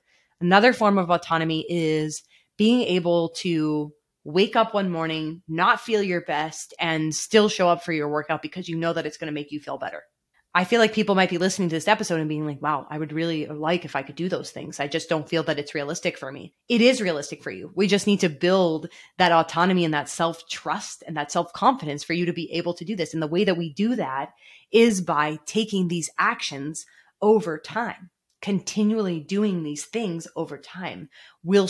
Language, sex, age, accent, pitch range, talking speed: English, female, 20-39, American, 155-200 Hz, 215 wpm